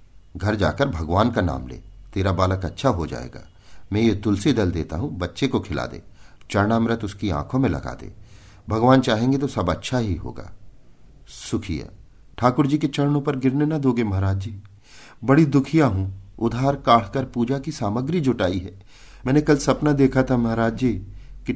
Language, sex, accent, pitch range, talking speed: Hindi, male, native, 95-130 Hz, 175 wpm